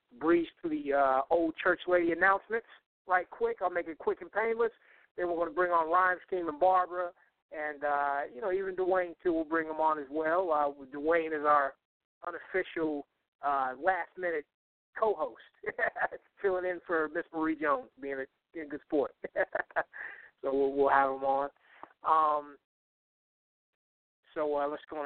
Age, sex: 30-49, male